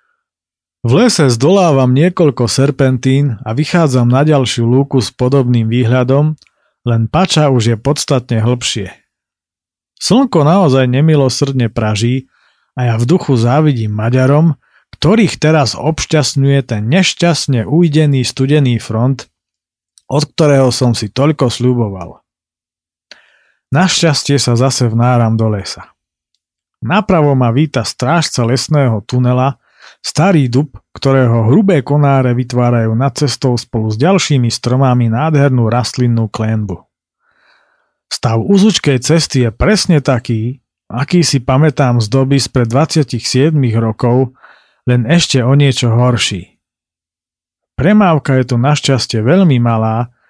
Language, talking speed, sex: Slovak, 115 wpm, male